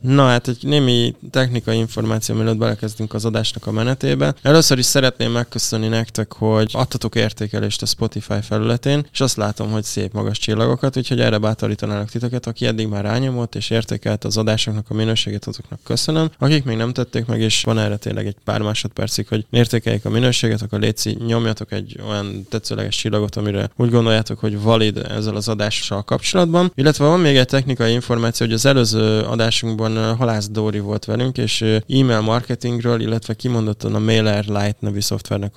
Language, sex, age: Hungarian, male, 20-39